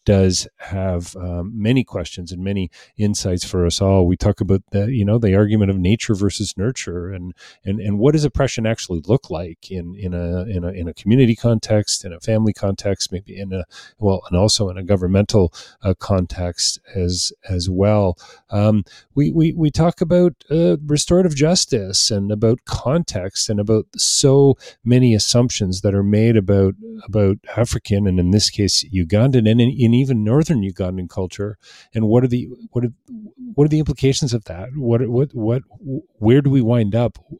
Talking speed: 185 wpm